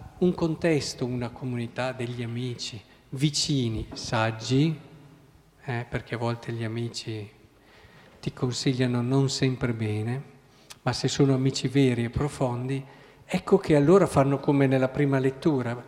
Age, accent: 50-69, native